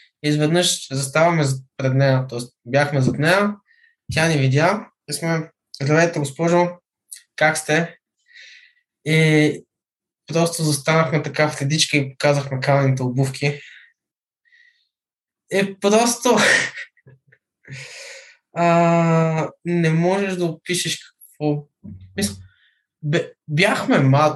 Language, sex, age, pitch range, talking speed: Bulgarian, male, 20-39, 130-170 Hz, 85 wpm